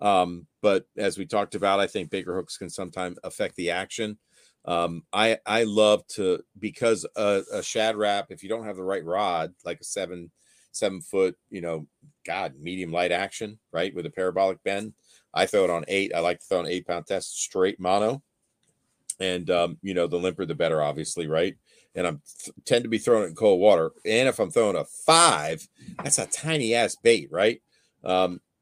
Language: English